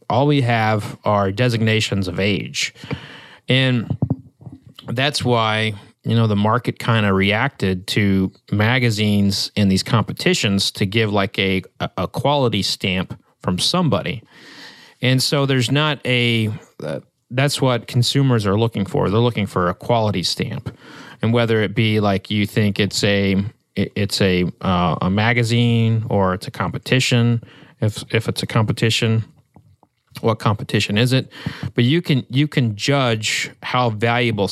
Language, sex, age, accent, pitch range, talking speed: English, male, 30-49, American, 100-125 Hz, 150 wpm